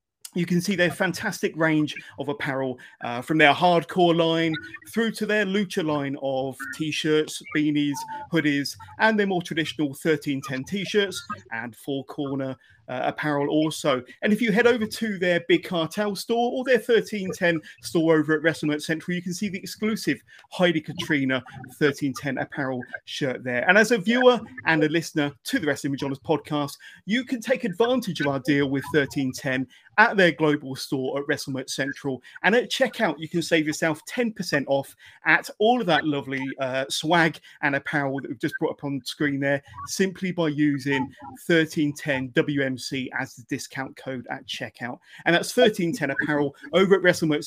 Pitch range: 140-185 Hz